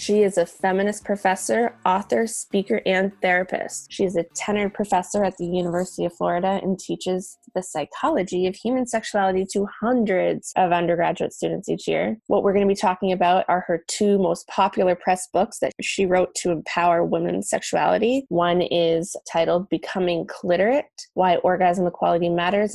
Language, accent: English, American